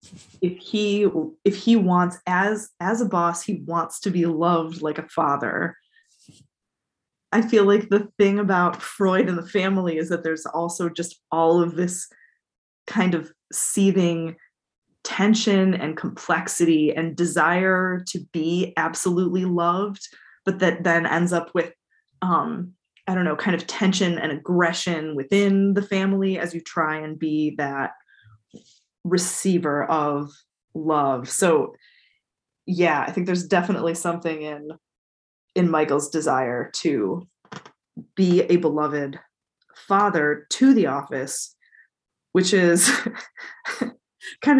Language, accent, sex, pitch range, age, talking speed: English, American, female, 165-200 Hz, 20-39, 130 wpm